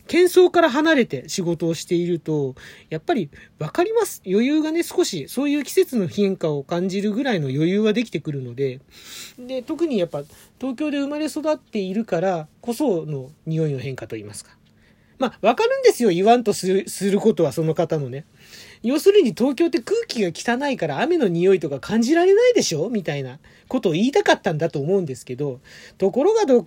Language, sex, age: Japanese, male, 40-59